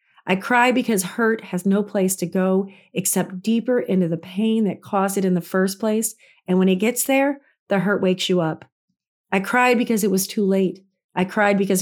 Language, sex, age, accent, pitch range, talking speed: English, female, 40-59, American, 185-235 Hz, 210 wpm